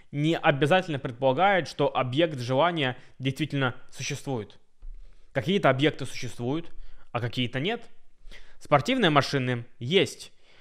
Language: Russian